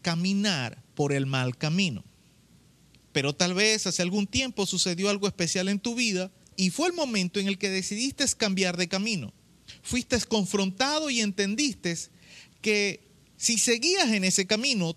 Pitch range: 165-240 Hz